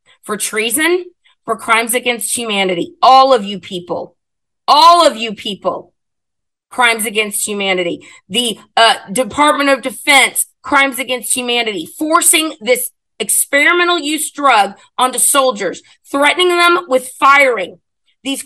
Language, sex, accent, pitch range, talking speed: English, female, American, 205-285 Hz, 120 wpm